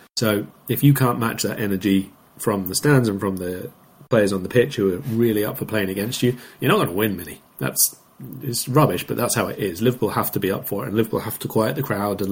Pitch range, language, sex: 105-130 Hz, English, male